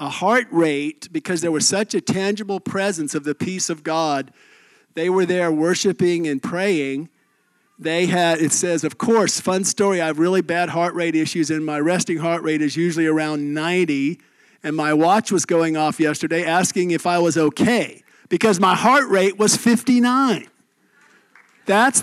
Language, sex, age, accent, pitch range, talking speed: English, male, 50-69, American, 160-220 Hz, 175 wpm